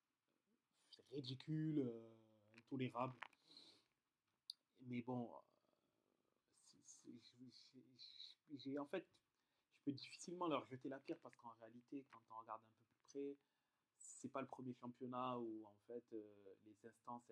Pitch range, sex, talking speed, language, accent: 120-145 Hz, male, 140 wpm, French, French